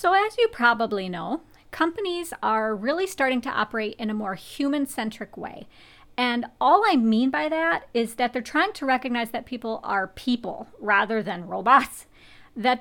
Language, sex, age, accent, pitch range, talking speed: English, female, 40-59, American, 215-270 Hz, 170 wpm